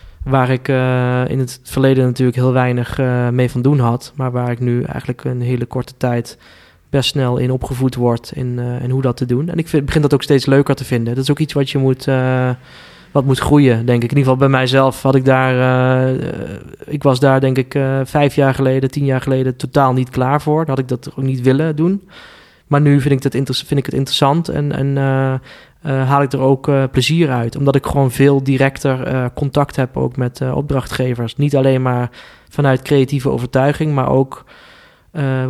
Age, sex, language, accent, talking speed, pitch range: 20-39, male, Dutch, Dutch, 215 wpm, 125-140 Hz